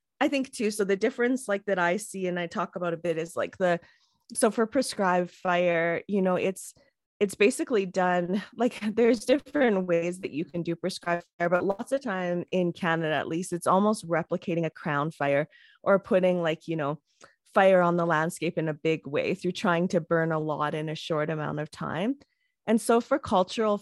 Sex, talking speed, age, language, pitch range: female, 205 wpm, 20-39, English, 170-205 Hz